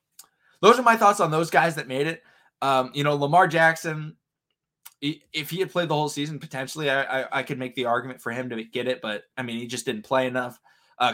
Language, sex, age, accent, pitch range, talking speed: English, male, 20-39, American, 120-150 Hz, 235 wpm